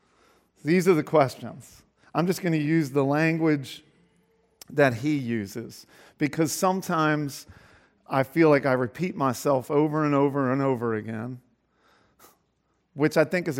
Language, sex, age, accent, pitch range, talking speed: English, male, 40-59, American, 125-160 Hz, 140 wpm